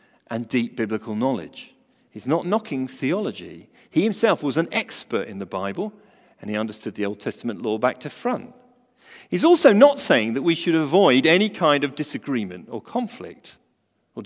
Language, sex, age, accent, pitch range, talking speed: English, male, 40-59, British, 110-180 Hz, 175 wpm